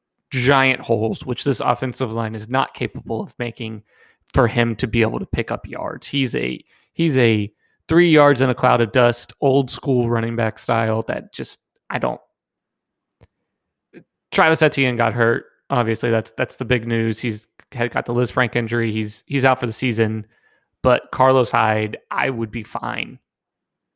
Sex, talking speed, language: male, 175 wpm, English